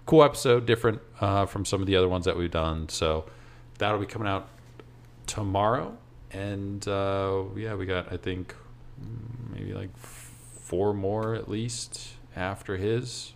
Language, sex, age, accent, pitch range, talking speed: English, male, 40-59, American, 90-120 Hz, 155 wpm